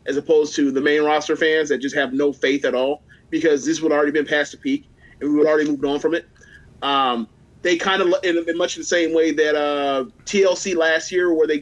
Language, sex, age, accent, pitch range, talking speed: English, male, 30-49, American, 145-165 Hz, 245 wpm